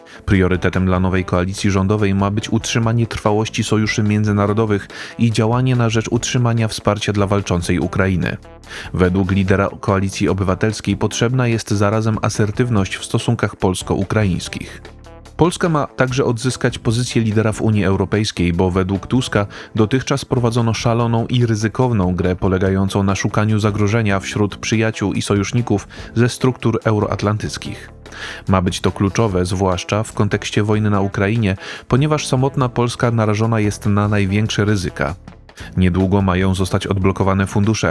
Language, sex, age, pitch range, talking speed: Polish, male, 20-39, 95-115 Hz, 130 wpm